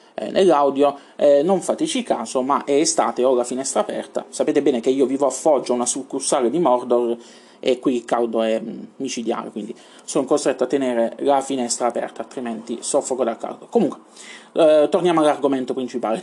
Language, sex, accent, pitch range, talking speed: Italian, male, native, 125-190 Hz, 165 wpm